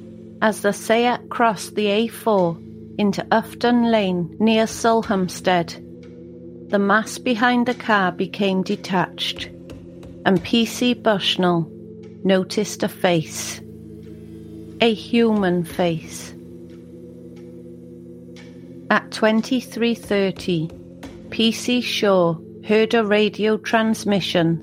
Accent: British